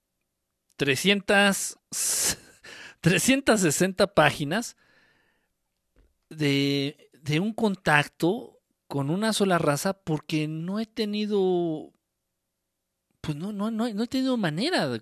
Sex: male